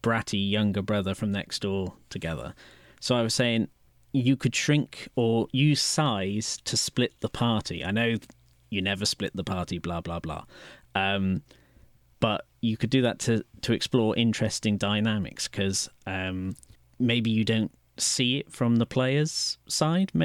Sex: male